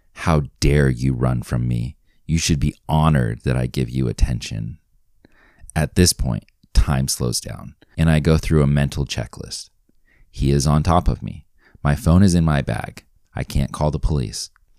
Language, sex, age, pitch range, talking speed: English, male, 30-49, 65-80 Hz, 185 wpm